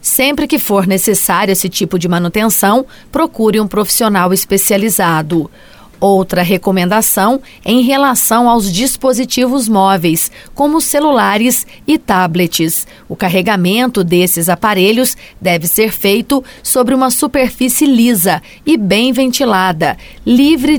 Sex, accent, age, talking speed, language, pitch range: female, Brazilian, 30-49, 115 wpm, Portuguese, 185-250 Hz